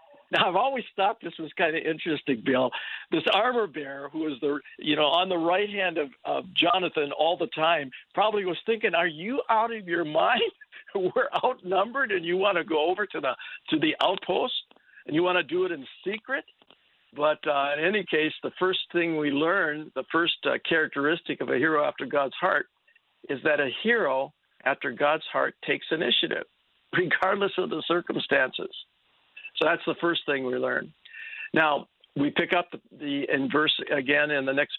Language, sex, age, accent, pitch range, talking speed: English, male, 60-79, American, 145-195 Hz, 190 wpm